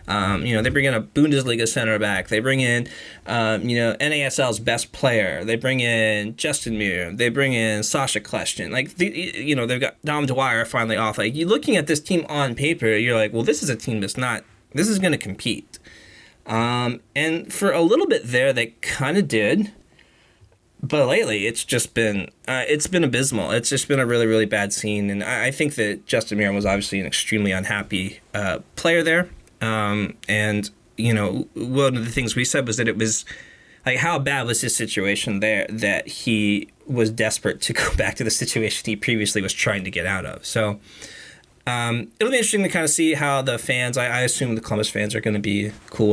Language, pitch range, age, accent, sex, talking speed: English, 105-130 Hz, 20-39, American, male, 215 wpm